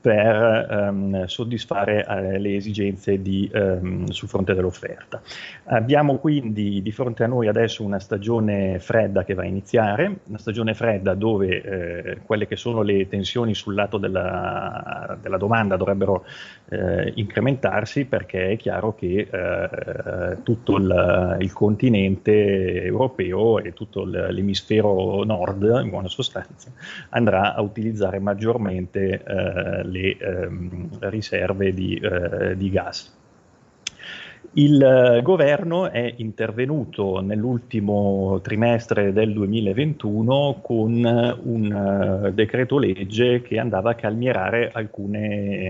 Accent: native